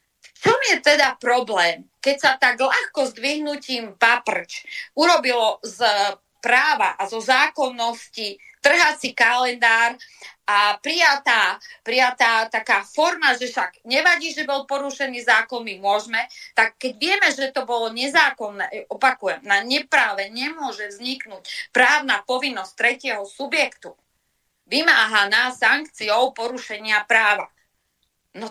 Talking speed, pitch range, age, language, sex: 115 wpm, 230-300 Hz, 30-49, Slovak, female